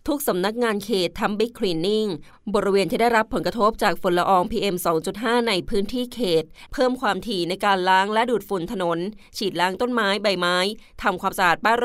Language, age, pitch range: Thai, 20-39, 185-225 Hz